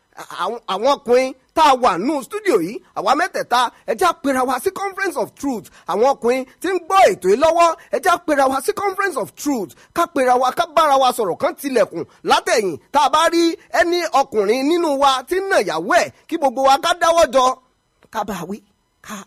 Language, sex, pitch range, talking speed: English, male, 270-370 Hz, 160 wpm